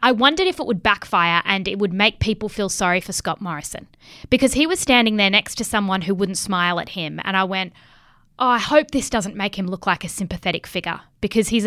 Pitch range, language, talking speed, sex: 190-255 Hz, English, 235 wpm, female